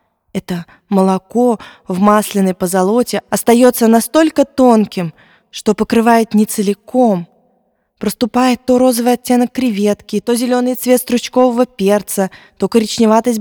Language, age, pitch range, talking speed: Russian, 20-39, 190-240 Hz, 105 wpm